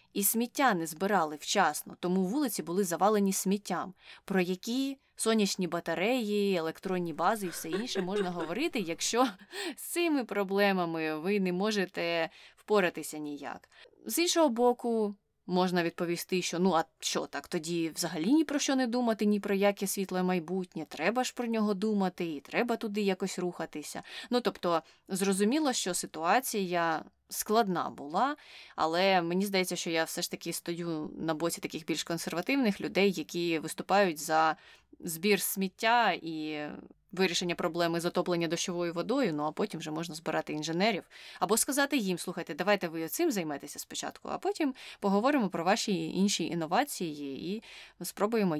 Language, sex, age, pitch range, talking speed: Ukrainian, female, 20-39, 170-210 Hz, 150 wpm